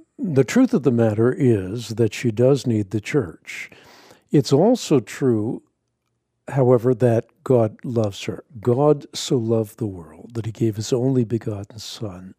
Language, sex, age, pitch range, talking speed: English, male, 60-79, 115-140 Hz, 155 wpm